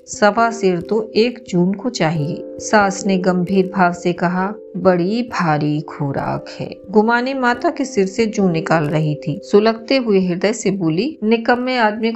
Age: 50-69